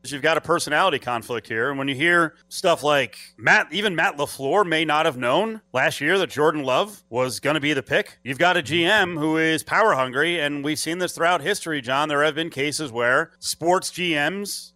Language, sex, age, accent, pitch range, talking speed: English, male, 30-49, American, 150-235 Hz, 215 wpm